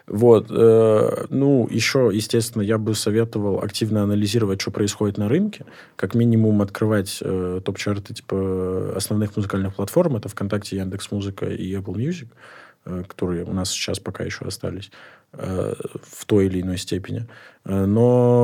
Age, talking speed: 20-39, 145 wpm